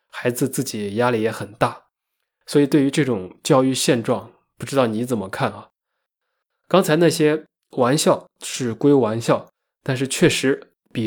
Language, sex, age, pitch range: Chinese, male, 20-39, 115-145 Hz